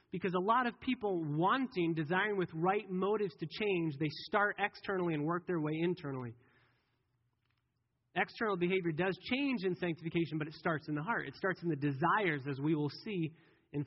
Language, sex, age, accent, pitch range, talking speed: English, male, 30-49, American, 135-175 Hz, 180 wpm